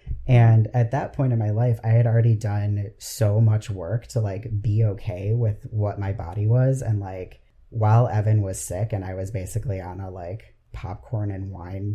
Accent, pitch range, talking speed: American, 105-125 Hz, 195 wpm